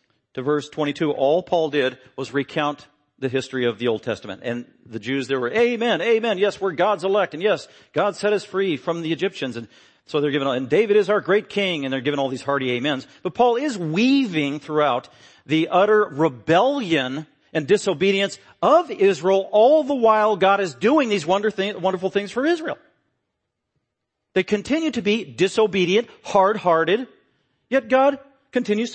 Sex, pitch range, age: male, 145-205 Hz, 40-59